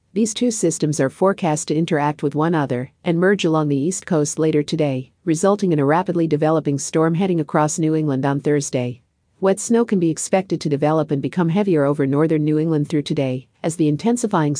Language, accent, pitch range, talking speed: English, American, 145-175 Hz, 200 wpm